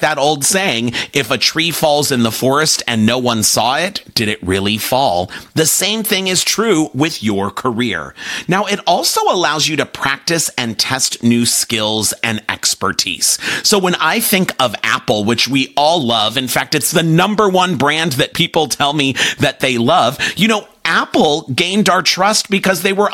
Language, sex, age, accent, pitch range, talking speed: English, male, 40-59, American, 135-200 Hz, 190 wpm